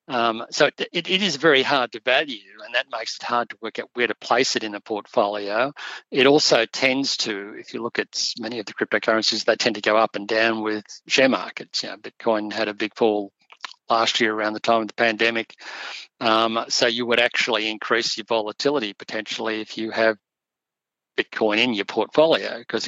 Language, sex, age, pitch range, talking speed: English, male, 50-69, 110-115 Hz, 205 wpm